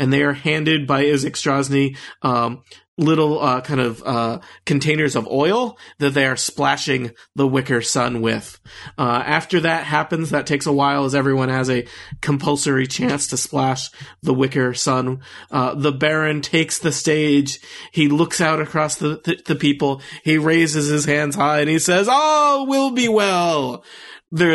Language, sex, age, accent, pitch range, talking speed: English, male, 30-49, American, 135-155 Hz, 170 wpm